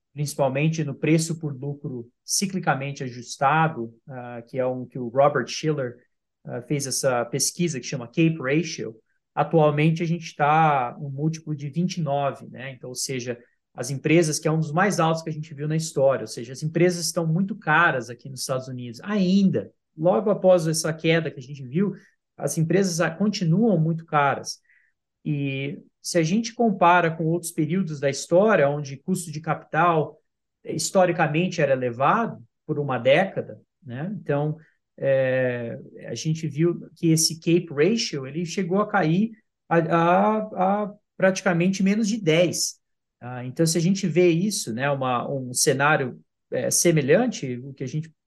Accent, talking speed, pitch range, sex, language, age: Brazilian, 160 wpm, 140-180 Hz, male, Portuguese, 20-39